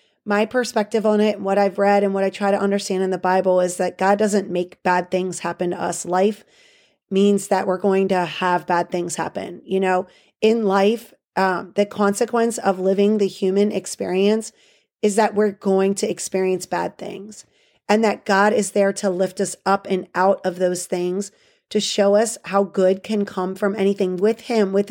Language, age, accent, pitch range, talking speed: English, 30-49, American, 190-210 Hz, 200 wpm